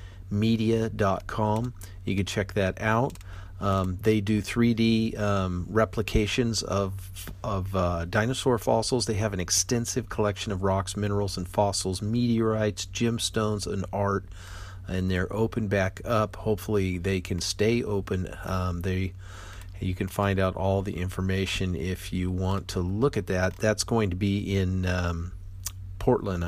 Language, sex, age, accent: English, male, 40-59, American